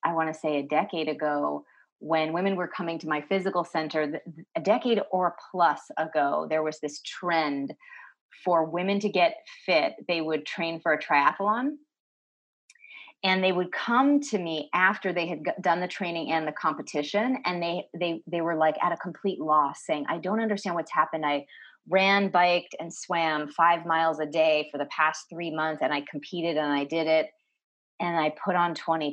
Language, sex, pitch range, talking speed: English, female, 155-195 Hz, 190 wpm